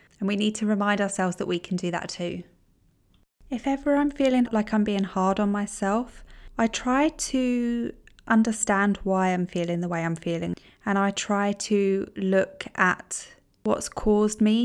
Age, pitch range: 20-39, 185-220 Hz